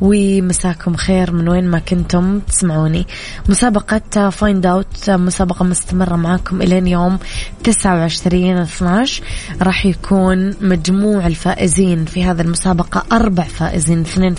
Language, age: Arabic, 20-39